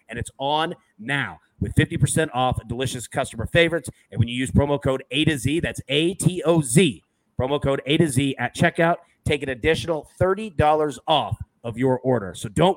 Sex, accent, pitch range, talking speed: male, American, 125-160 Hz, 180 wpm